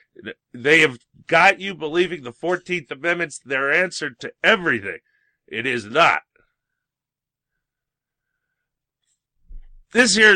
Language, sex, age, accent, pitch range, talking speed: English, male, 30-49, American, 105-160 Hz, 100 wpm